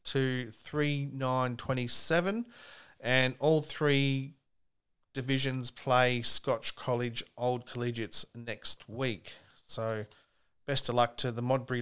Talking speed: 110 wpm